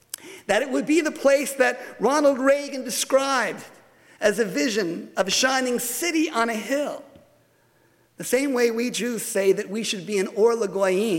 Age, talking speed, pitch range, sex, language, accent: 50-69, 170 wpm, 190-255 Hz, male, English, American